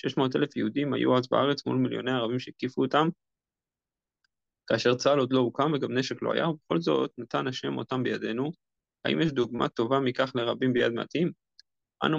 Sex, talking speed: male, 175 wpm